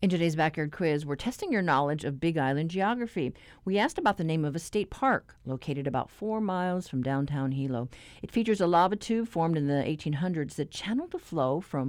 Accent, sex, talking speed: American, female, 210 wpm